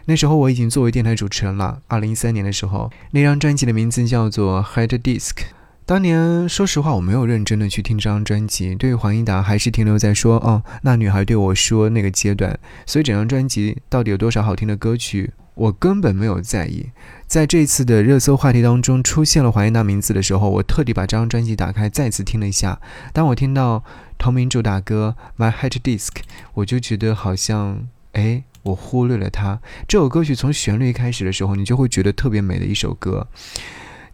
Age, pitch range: 20-39, 100-125 Hz